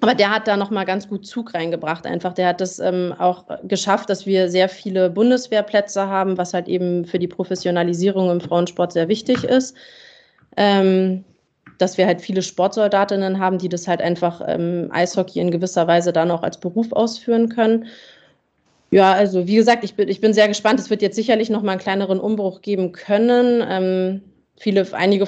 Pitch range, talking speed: 180-210 Hz, 190 wpm